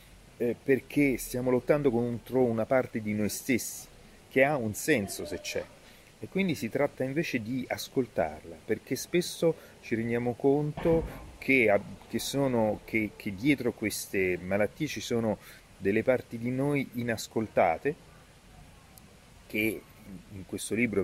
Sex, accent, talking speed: male, native, 130 wpm